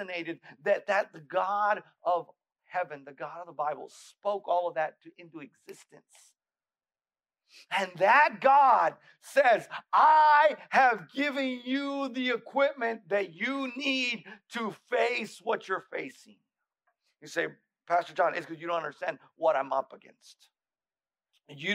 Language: English